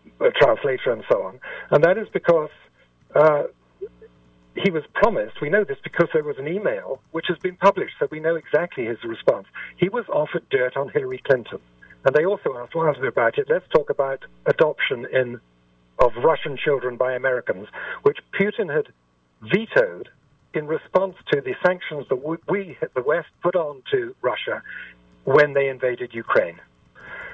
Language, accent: English, British